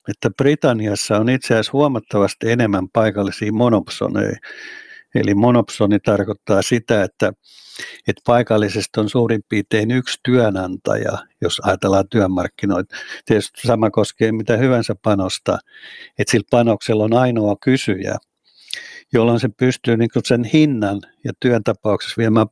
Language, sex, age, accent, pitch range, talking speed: Finnish, male, 60-79, native, 105-125 Hz, 120 wpm